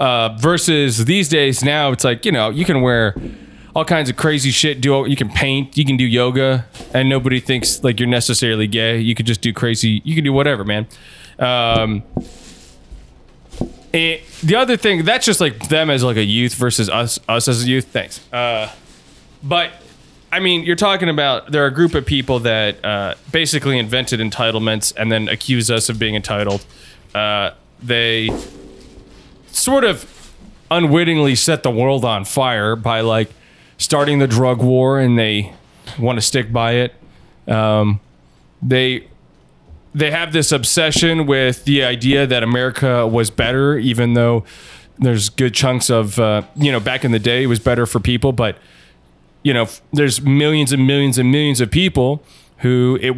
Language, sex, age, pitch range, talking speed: English, male, 20-39, 115-140 Hz, 175 wpm